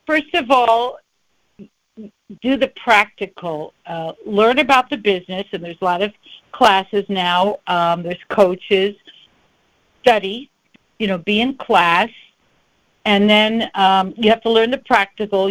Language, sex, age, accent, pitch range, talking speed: English, female, 60-79, American, 190-240 Hz, 140 wpm